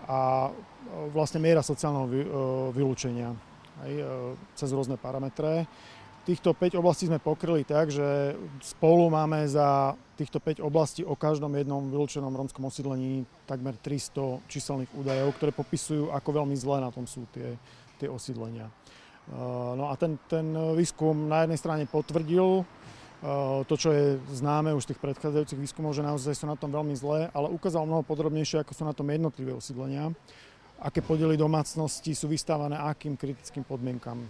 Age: 40-59